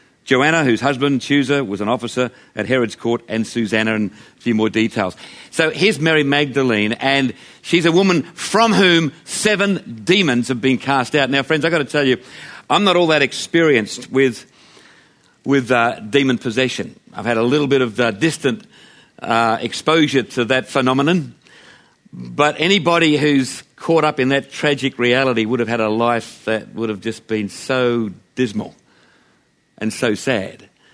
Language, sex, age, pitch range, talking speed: English, male, 50-69, 115-150 Hz, 170 wpm